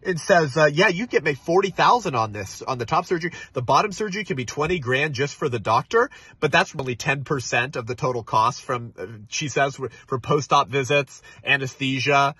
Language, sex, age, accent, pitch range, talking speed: English, male, 30-49, American, 125-165 Hz, 205 wpm